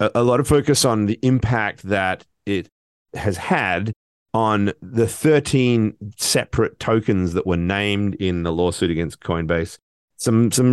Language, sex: English, male